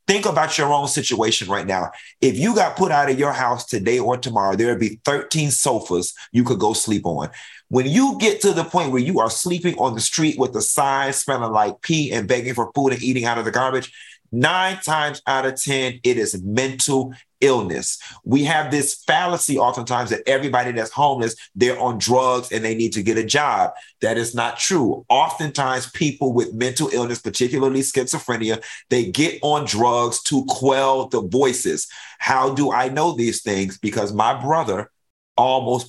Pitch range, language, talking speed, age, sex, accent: 115-145 Hz, English, 190 wpm, 30-49, male, American